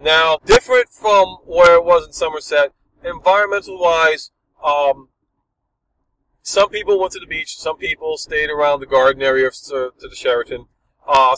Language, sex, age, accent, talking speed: English, male, 40-59, American, 140 wpm